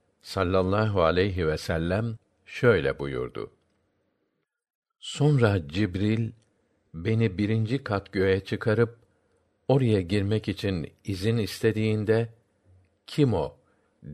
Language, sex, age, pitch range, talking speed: Turkish, male, 60-79, 100-120 Hz, 85 wpm